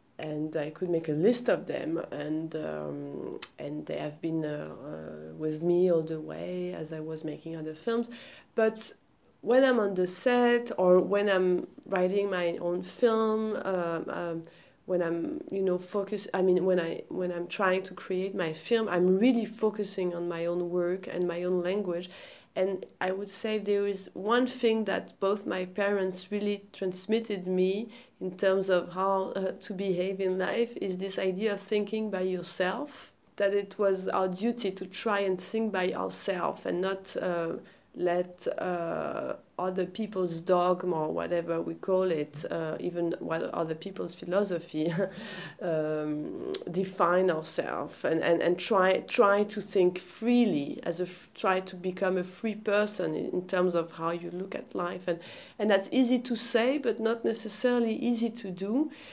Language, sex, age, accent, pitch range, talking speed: English, female, 30-49, French, 175-210 Hz, 175 wpm